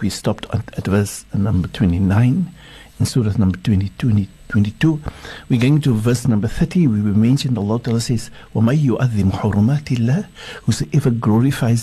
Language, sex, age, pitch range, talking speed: English, male, 60-79, 110-135 Hz, 125 wpm